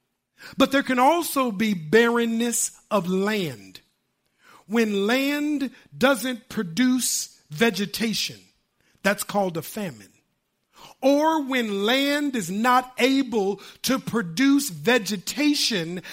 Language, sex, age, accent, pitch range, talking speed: English, male, 50-69, American, 205-255 Hz, 95 wpm